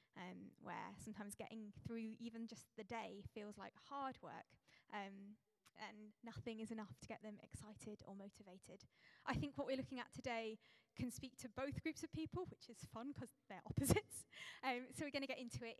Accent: British